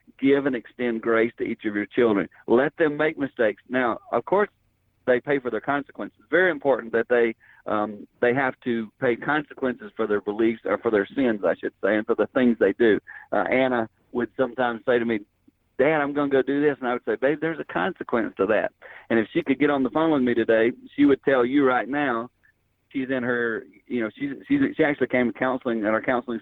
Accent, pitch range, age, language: American, 115-140 Hz, 40-59, English